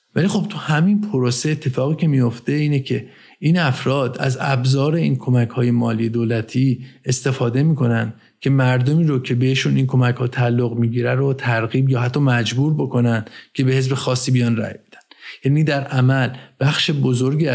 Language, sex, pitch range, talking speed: Persian, male, 120-135 Hz, 170 wpm